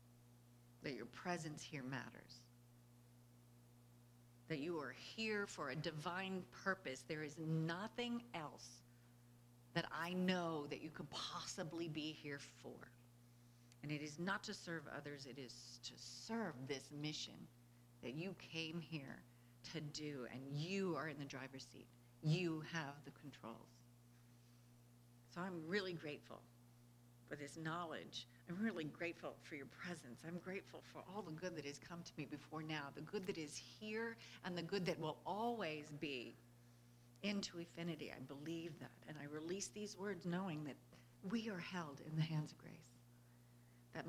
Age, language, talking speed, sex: 50-69, English, 160 wpm, female